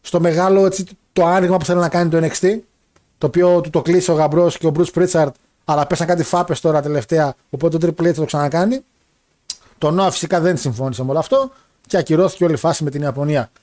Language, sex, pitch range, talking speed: Greek, male, 150-195 Hz, 225 wpm